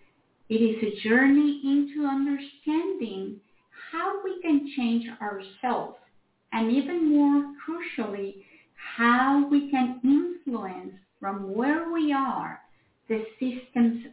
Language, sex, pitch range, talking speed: English, female, 220-290 Hz, 105 wpm